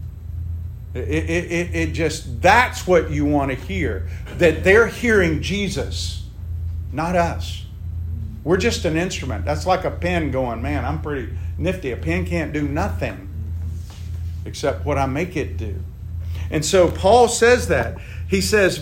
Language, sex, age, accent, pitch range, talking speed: English, male, 50-69, American, 85-105 Hz, 150 wpm